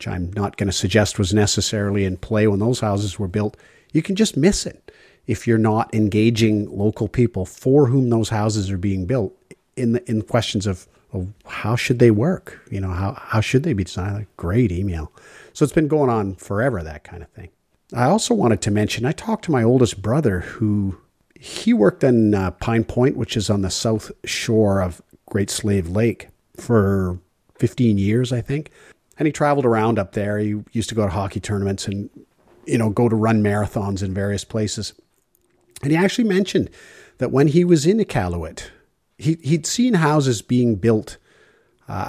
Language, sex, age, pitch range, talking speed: English, male, 50-69, 100-125 Hz, 195 wpm